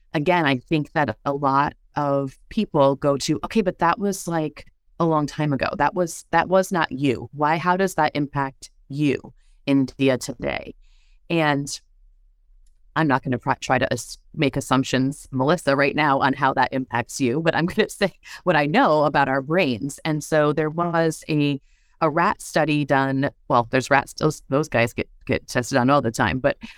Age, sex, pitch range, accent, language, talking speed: 30-49, female, 135-165 Hz, American, English, 190 wpm